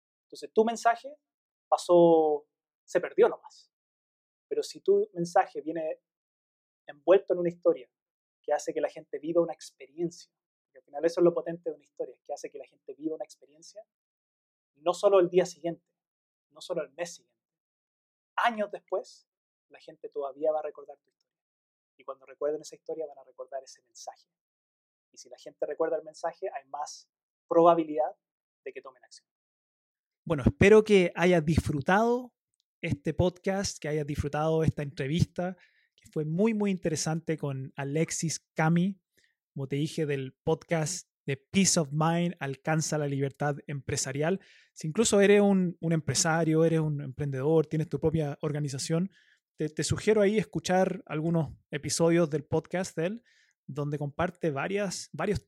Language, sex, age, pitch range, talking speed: Spanish, male, 20-39, 150-185 Hz, 160 wpm